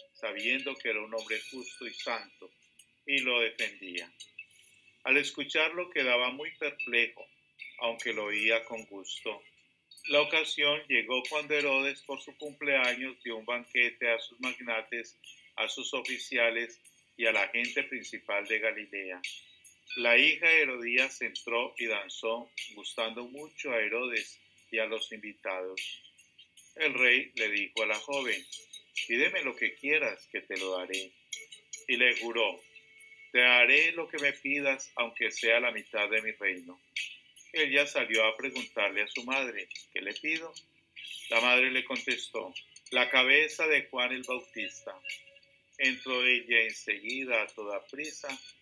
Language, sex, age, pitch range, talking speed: English, male, 50-69, 115-150 Hz, 145 wpm